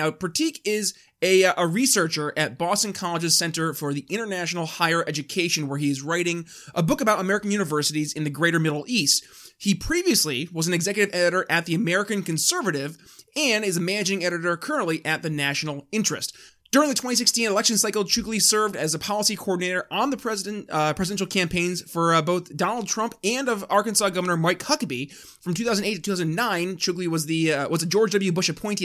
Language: English